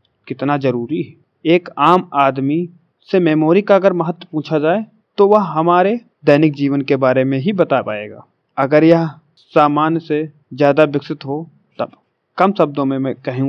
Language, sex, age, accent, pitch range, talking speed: Hindi, male, 30-49, native, 140-165 Hz, 165 wpm